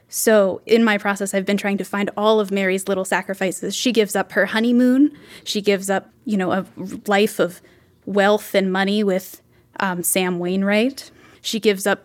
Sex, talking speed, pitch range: female, 185 wpm, 190-220 Hz